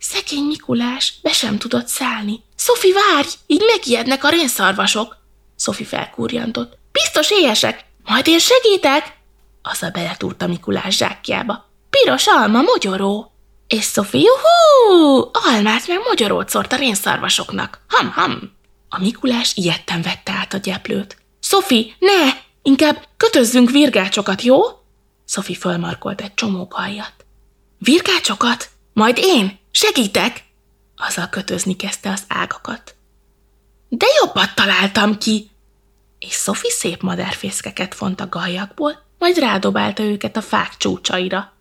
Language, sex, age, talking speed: Hungarian, female, 20-39, 130 wpm